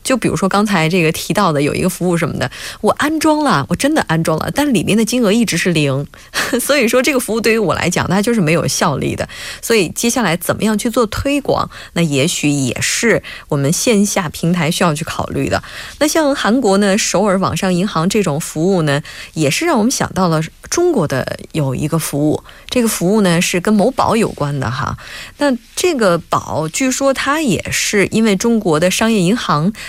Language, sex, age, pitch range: Korean, female, 20-39, 170-245 Hz